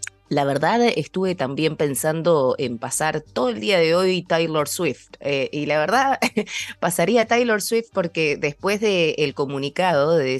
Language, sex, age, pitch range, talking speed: Spanish, female, 20-39, 125-155 Hz, 160 wpm